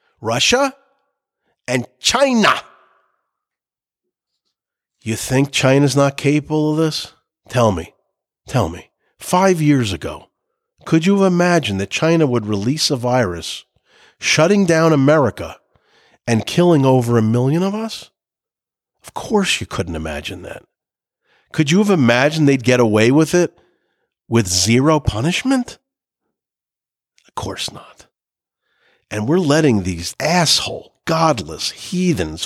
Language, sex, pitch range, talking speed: English, male, 120-185 Hz, 120 wpm